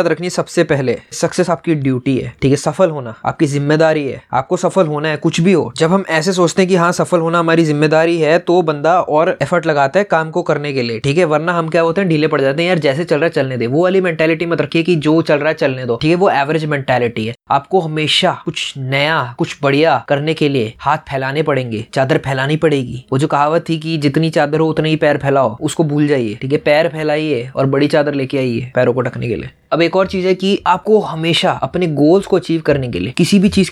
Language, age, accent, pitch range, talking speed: Hindi, 20-39, native, 145-180 Hz, 245 wpm